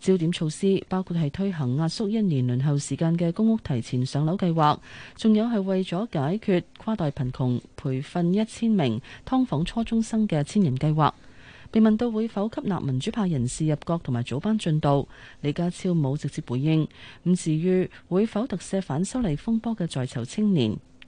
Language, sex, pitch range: Chinese, female, 135-195 Hz